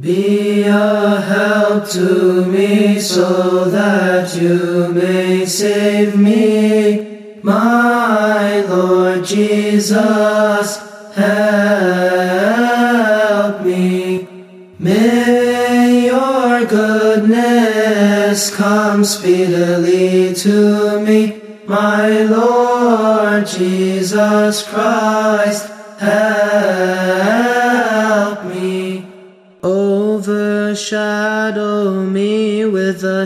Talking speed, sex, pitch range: 60 wpm, male, 190-215 Hz